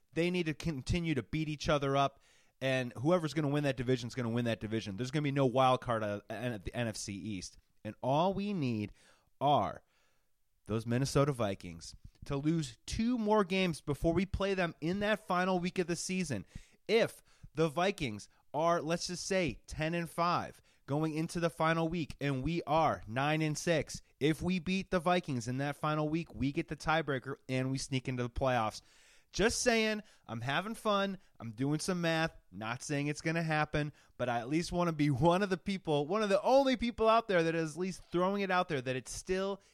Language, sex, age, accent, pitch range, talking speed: English, male, 30-49, American, 125-175 Hz, 215 wpm